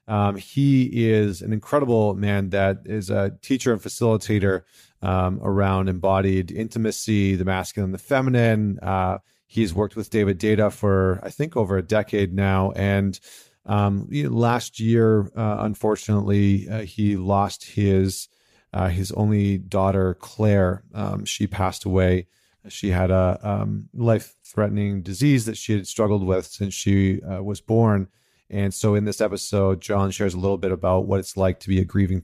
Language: English